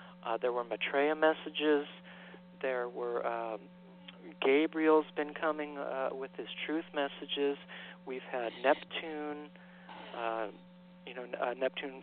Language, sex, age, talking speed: English, male, 40-59, 120 wpm